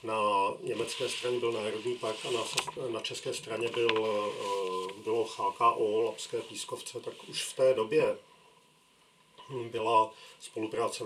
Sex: male